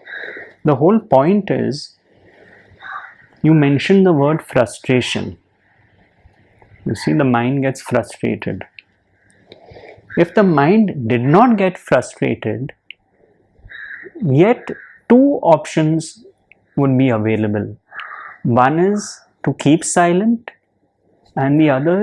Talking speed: 100 wpm